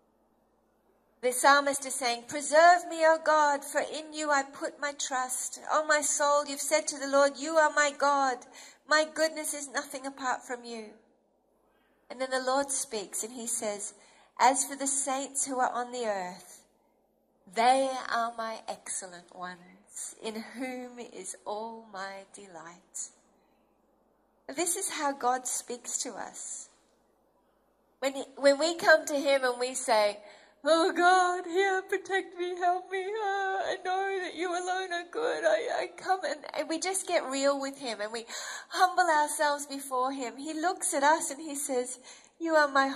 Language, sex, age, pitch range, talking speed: English, female, 40-59, 255-320 Hz, 170 wpm